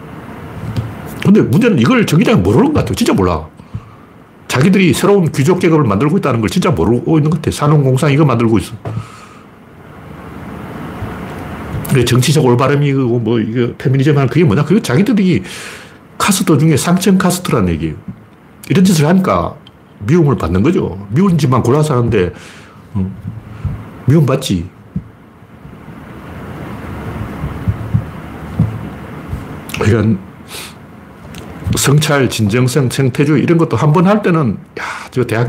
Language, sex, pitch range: Korean, male, 110-165 Hz